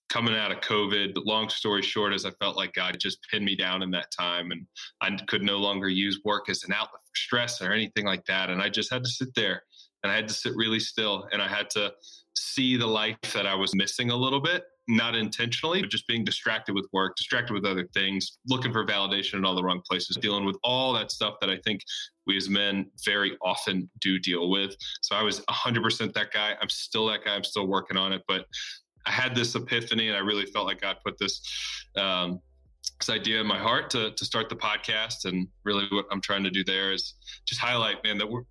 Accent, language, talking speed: American, English, 235 wpm